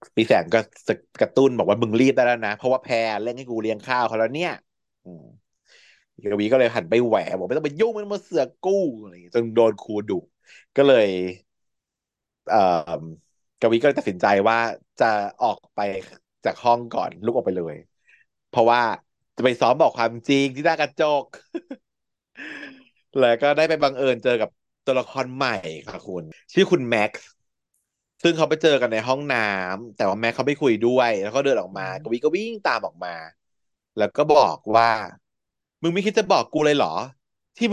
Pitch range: 110-170 Hz